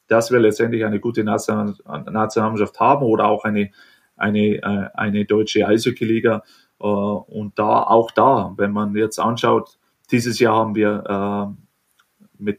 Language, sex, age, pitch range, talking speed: German, male, 30-49, 105-120 Hz, 130 wpm